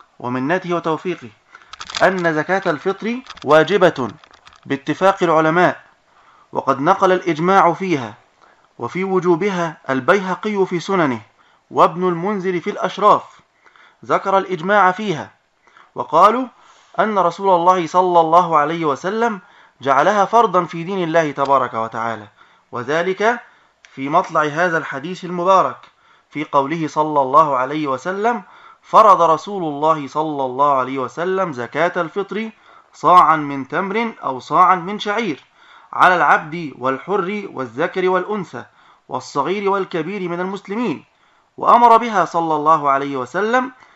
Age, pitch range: 20-39, 150-195 Hz